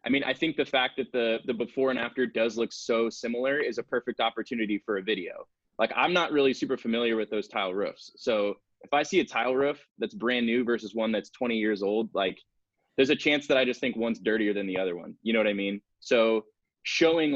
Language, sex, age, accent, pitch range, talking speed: English, male, 20-39, American, 105-130 Hz, 240 wpm